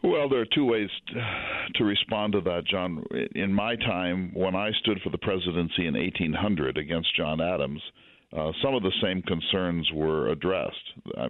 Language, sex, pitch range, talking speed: English, male, 80-95 Hz, 180 wpm